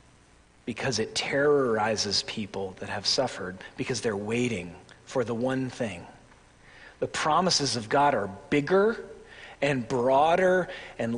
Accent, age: American, 40-59